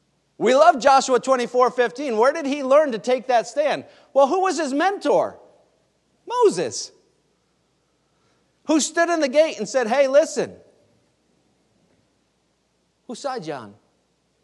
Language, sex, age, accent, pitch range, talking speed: English, male, 50-69, American, 195-275 Hz, 130 wpm